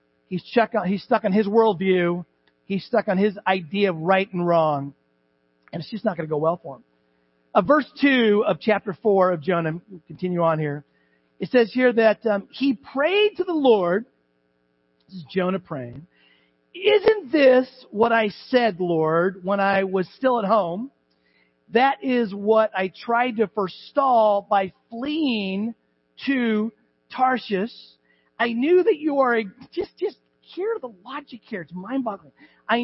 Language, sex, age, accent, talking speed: English, male, 40-59, American, 160 wpm